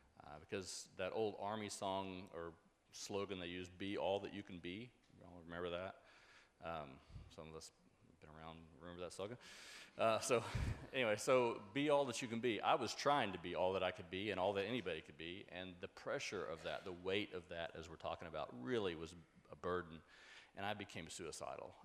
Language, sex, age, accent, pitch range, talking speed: English, male, 40-59, American, 80-100 Hz, 205 wpm